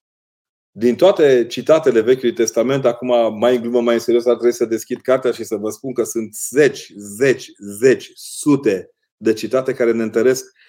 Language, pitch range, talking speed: Romanian, 110-125 Hz, 180 wpm